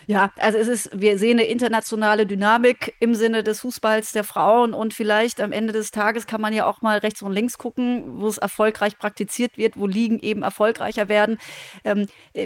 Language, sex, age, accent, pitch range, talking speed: German, female, 30-49, German, 200-225 Hz, 195 wpm